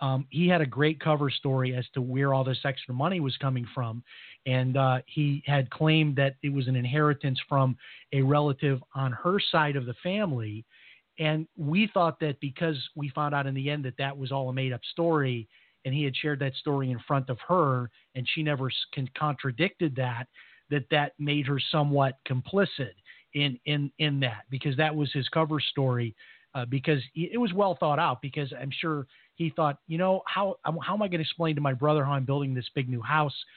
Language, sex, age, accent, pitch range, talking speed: English, male, 40-59, American, 135-155 Hz, 210 wpm